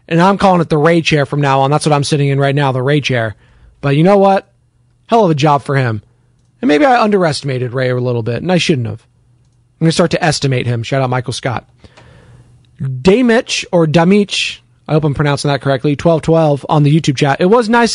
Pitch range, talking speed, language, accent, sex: 130-185 Hz, 235 wpm, English, American, male